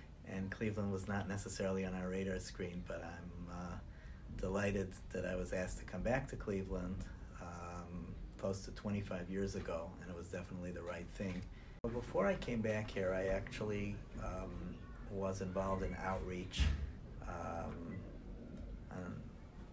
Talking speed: 150 wpm